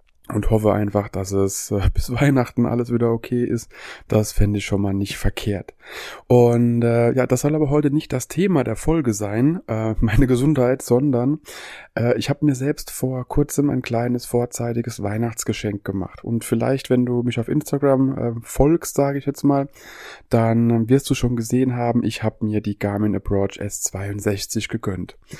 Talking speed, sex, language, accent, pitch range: 175 wpm, male, German, German, 105-130 Hz